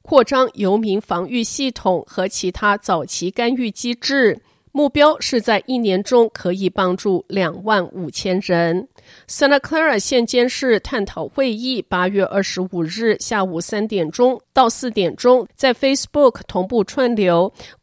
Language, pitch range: Chinese, 190-250 Hz